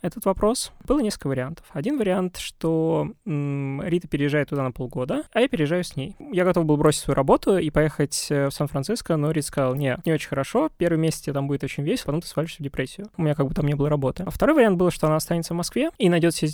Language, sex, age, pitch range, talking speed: Russian, male, 20-39, 145-180 Hz, 245 wpm